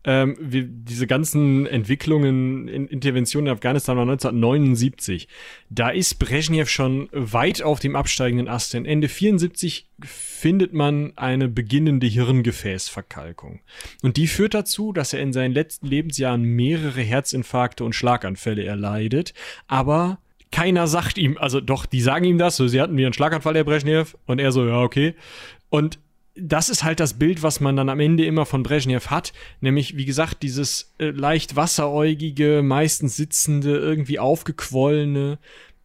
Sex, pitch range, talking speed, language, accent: male, 125-155 Hz, 150 wpm, German, German